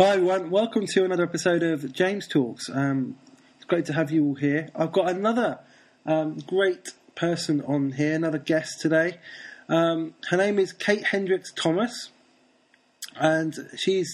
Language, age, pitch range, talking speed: English, 20-39, 150-180 Hz, 155 wpm